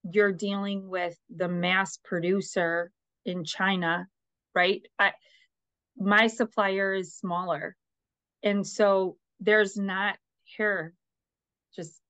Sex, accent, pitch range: female, American, 180-220 Hz